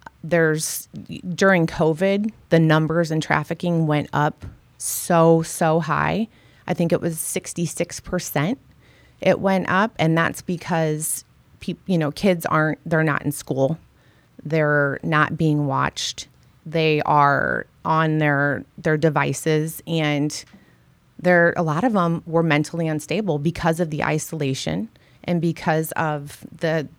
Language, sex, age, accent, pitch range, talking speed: English, female, 30-49, American, 150-175 Hz, 135 wpm